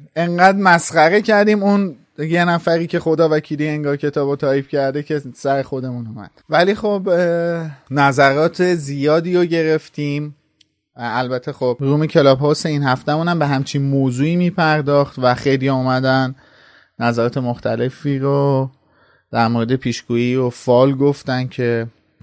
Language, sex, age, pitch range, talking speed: Persian, male, 30-49, 130-165 Hz, 135 wpm